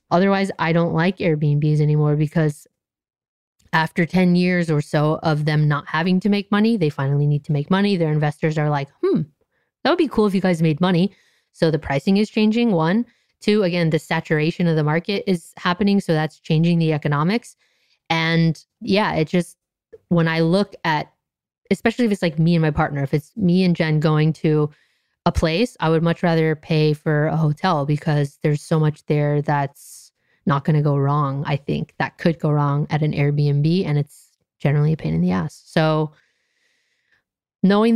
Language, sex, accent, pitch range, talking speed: English, female, American, 155-185 Hz, 195 wpm